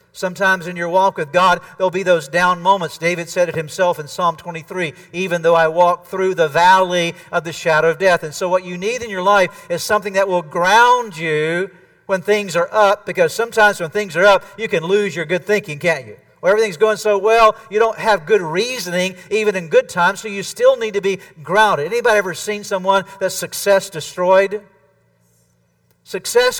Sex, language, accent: male, English, American